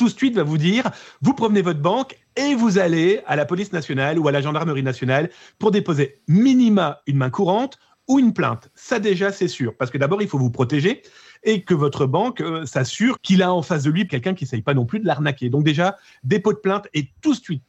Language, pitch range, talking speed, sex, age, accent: French, 155-205 Hz, 240 wpm, male, 40-59, French